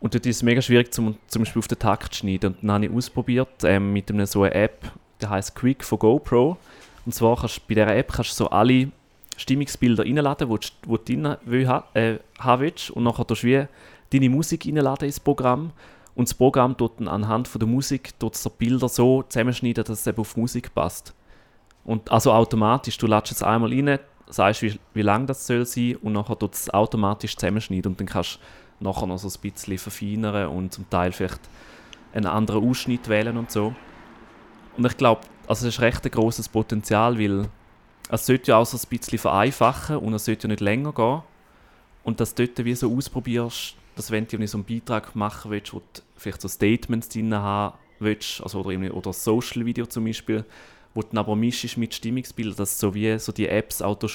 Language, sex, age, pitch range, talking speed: German, male, 30-49, 105-125 Hz, 210 wpm